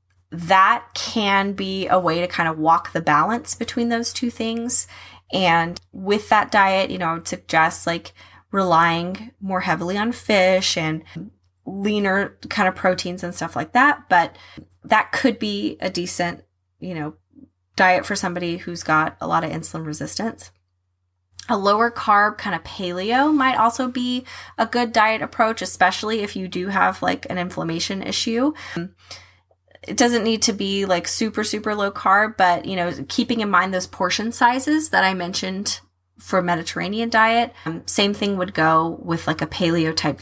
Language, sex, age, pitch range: English, female, 10-29, 165-225 Hz